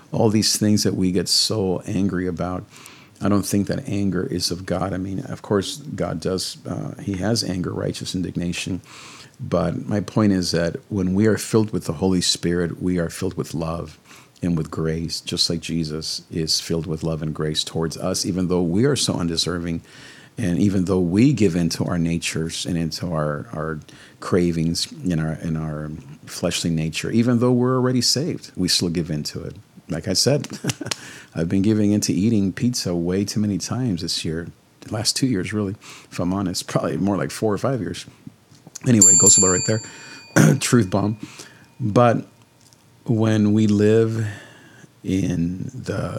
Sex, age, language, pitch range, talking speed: male, 50-69, English, 85-110 Hz, 180 wpm